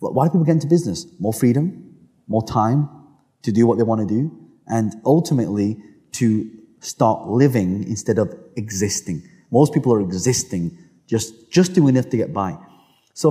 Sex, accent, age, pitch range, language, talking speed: male, British, 30-49, 110-140 Hz, English, 165 wpm